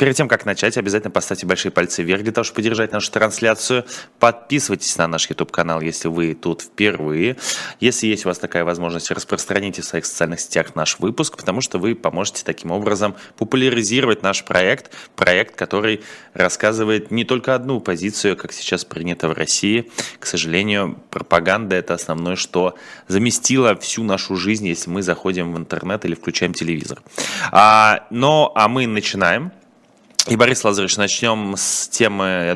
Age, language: 20-39, Russian